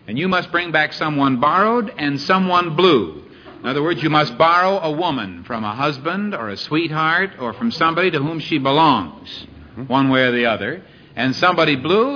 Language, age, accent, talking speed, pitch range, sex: English, 60-79, American, 195 wpm, 150-205 Hz, male